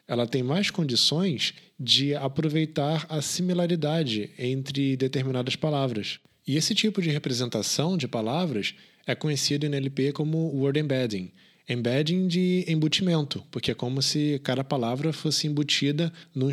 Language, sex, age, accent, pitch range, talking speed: Portuguese, male, 20-39, Brazilian, 120-160 Hz, 135 wpm